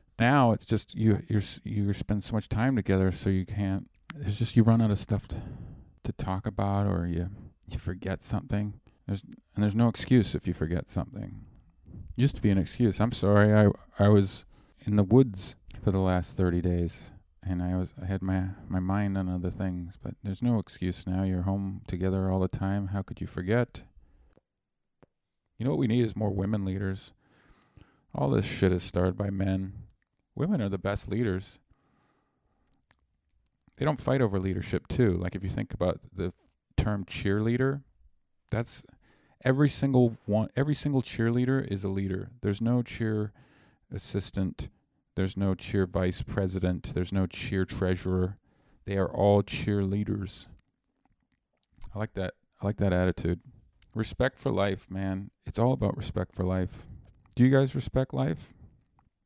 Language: English